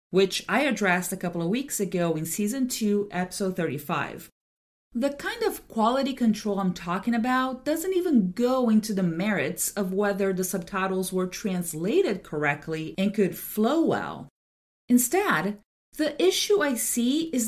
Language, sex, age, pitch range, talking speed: English, female, 40-59, 190-260 Hz, 150 wpm